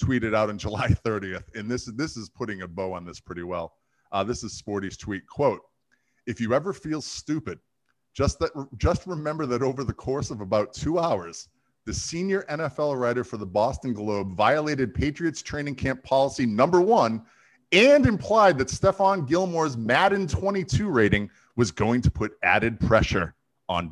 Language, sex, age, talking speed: English, male, 30-49, 175 wpm